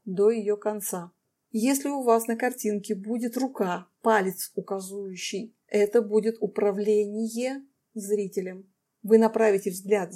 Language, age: Russian, 30-49